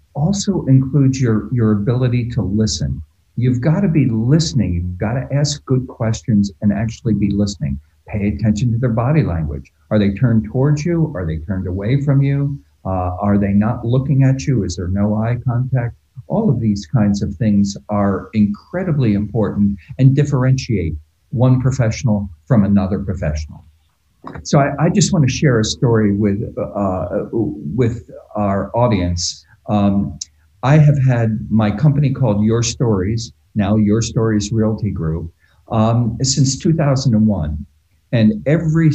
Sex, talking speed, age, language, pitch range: male, 150 wpm, 50-69, English, 100-130 Hz